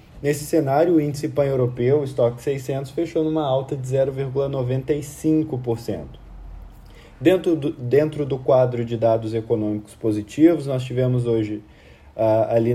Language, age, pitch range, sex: Portuguese, 20-39, 120-155 Hz, male